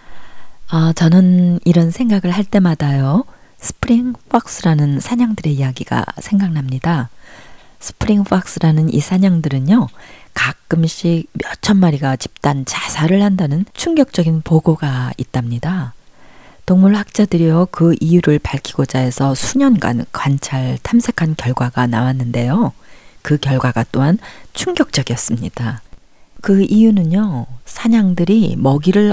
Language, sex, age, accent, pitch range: Korean, female, 40-59, native, 135-200 Hz